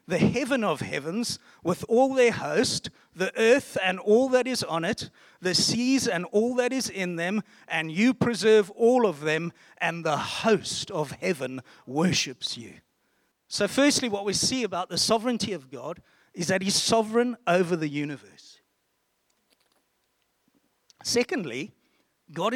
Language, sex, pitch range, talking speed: English, male, 175-235 Hz, 150 wpm